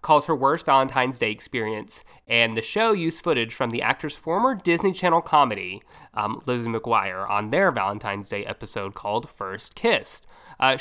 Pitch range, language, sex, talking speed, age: 115-155 Hz, English, male, 165 wpm, 20-39